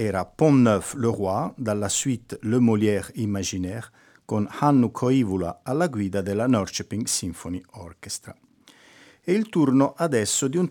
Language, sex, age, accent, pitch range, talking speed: Italian, male, 50-69, native, 100-135 Hz, 140 wpm